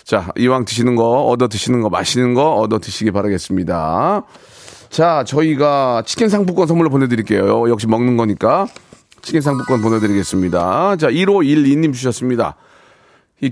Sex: male